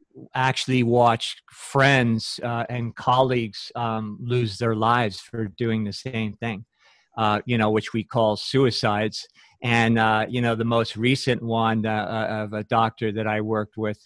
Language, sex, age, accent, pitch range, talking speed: English, male, 50-69, American, 110-130 Hz, 160 wpm